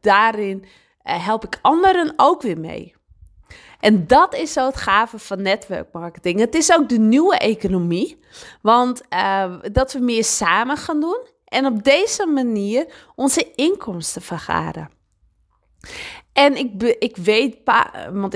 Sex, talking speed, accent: female, 135 wpm, Dutch